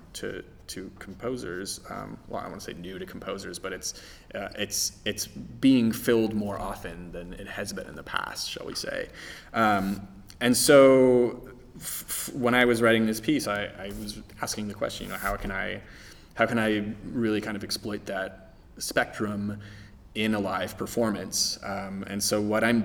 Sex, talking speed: male, 185 wpm